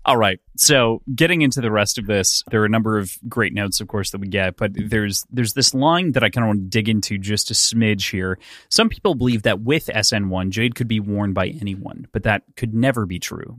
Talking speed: 245 wpm